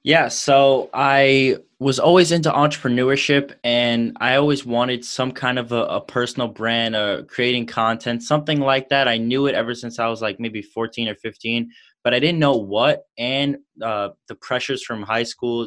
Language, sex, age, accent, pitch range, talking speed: English, male, 20-39, American, 105-130 Hz, 185 wpm